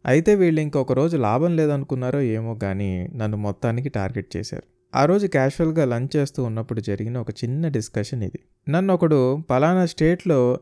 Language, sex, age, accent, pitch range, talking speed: Telugu, male, 20-39, native, 110-140 Hz, 155 wpm